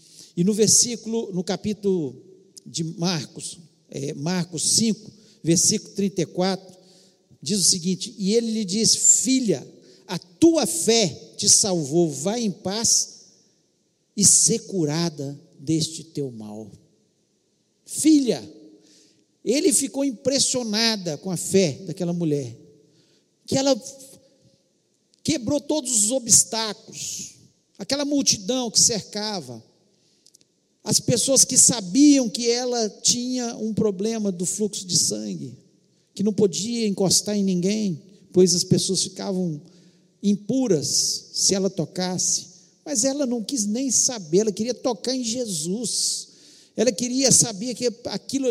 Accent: Brazilian